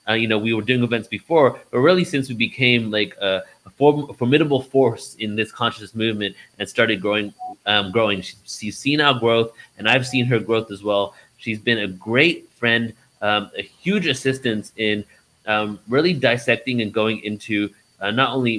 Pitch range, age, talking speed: 105-125 Hz, 30-49, 185 wpm